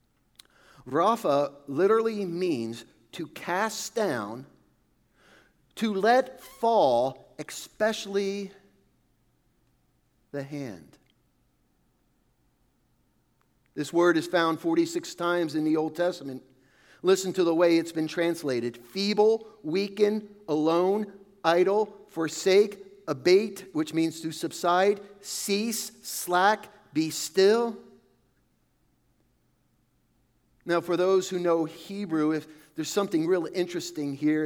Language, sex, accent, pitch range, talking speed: English, male, American, 155-215 Hz, 95 wpm